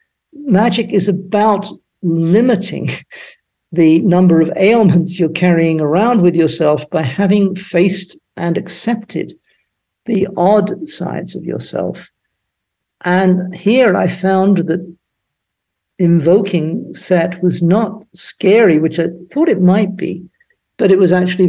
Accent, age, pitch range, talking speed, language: British, 60-79, 170-200 Hz, 120 wpm, English